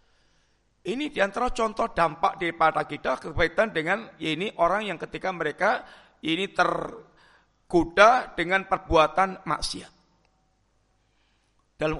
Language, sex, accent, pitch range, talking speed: Indonesian, male, native, 155-230 Hz, 95 wpm